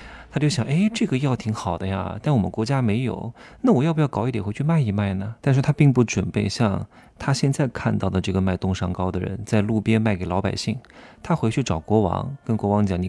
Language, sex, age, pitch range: Chinese, male, 20-39, 100-135 Hz